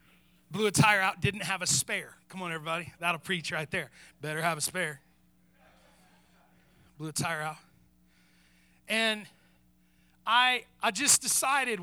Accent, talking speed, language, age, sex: American, 150 wpm, English, 30-49, male